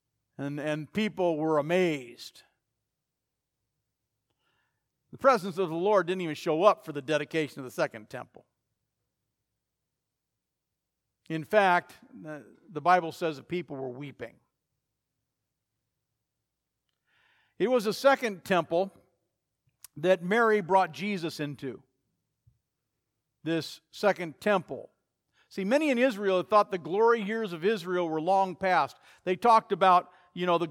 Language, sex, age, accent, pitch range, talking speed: English, male, 60-79, American, 145-205 Hz, 120 wpm